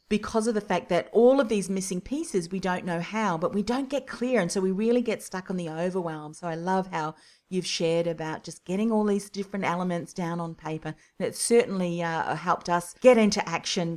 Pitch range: 170-225 Hz